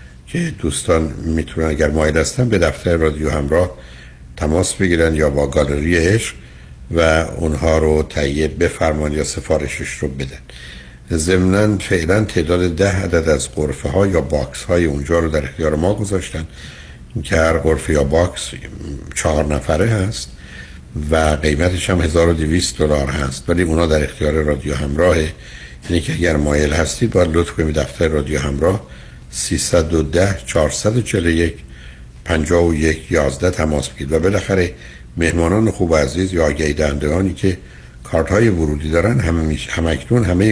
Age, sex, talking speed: 60-79, male, 140 wpm